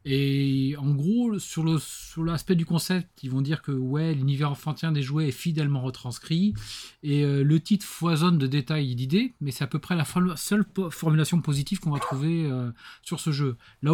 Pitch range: 135-165 Hz